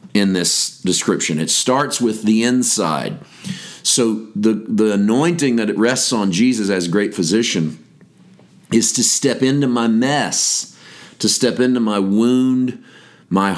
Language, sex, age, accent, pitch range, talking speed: English, male, 40-59, American, 100-125 Hz, 145 wpm